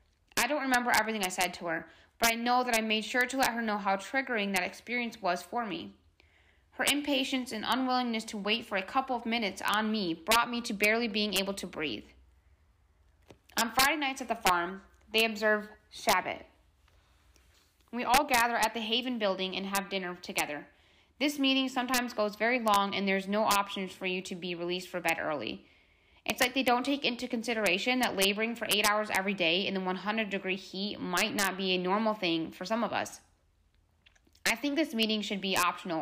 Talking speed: 200 wpm